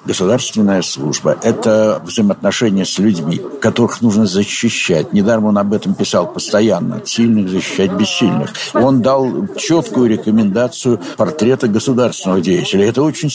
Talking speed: 125 wpm